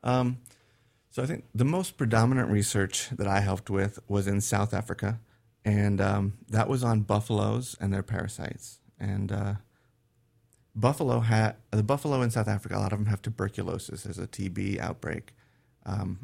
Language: English